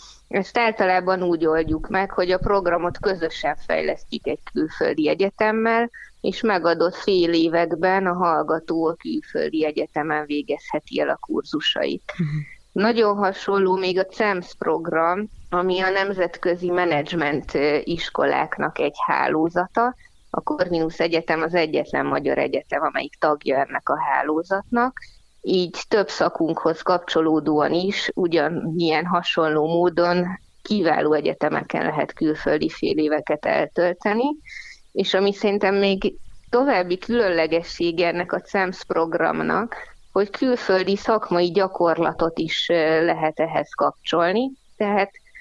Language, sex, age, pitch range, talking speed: Hungarian, female, 20-39, 165-200 Hz, 110 wpm